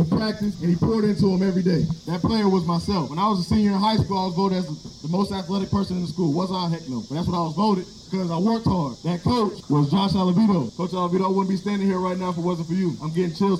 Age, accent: 20-39, American